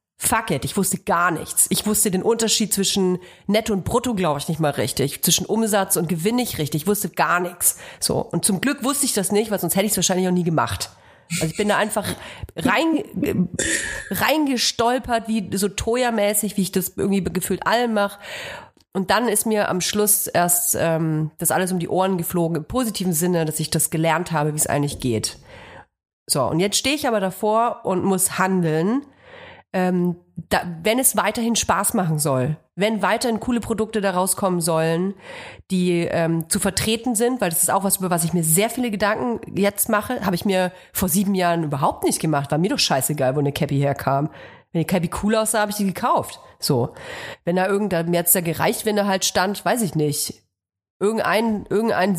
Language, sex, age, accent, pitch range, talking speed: German, female, 30-49, German, 170-215 Hz, 200 wpm